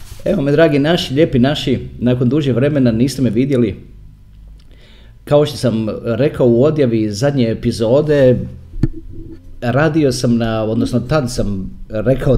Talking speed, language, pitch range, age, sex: 125 wpm, Croatian, 95-130 Hz, 40-59, male